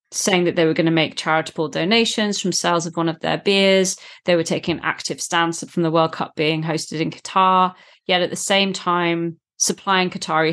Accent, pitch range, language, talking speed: British, 165-190 Hz, English, 210 wpm